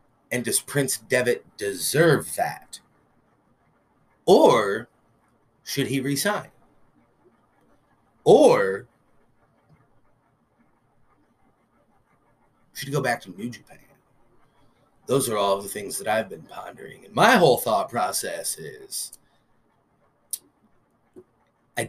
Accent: American